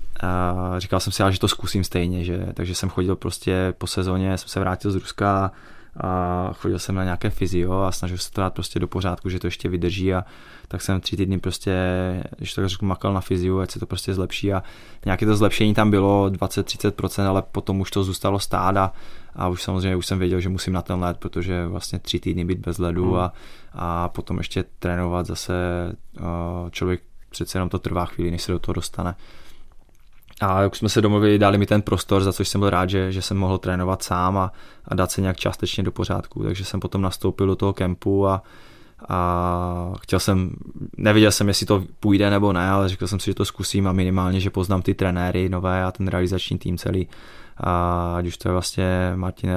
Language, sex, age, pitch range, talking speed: Czech, male, 20-39, 90-95 Hz, 210 wpm